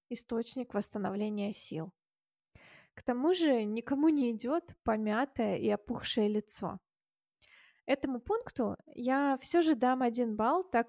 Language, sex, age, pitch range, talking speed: Russian, female, 20-39, 225-270 Hz, 120 wpm